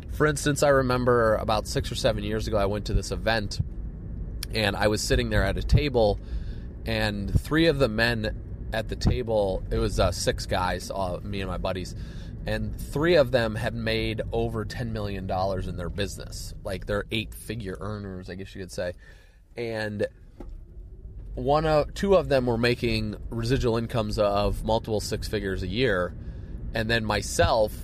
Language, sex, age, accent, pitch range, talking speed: English, male, 30-49, American, 90-125 Hz, 170 wpm